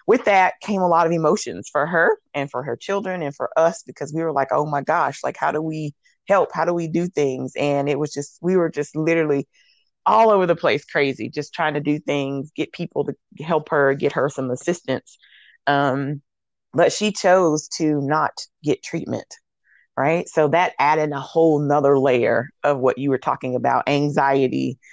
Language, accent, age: English, American, 20-39